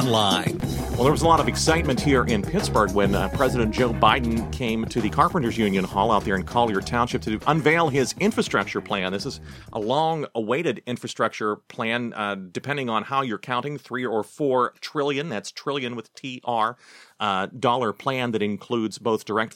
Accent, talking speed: American, 175 wpm